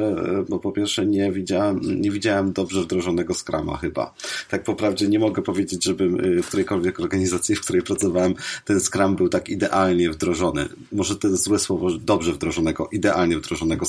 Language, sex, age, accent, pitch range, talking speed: Polish, male, 30-49, native, 90-100 Hz, 165 wpm